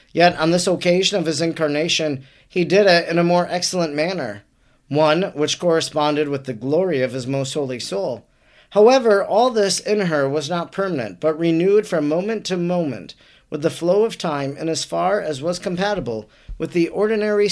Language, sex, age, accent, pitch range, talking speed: English, male, 40-59, American, 150-190 Hz, 185 wpm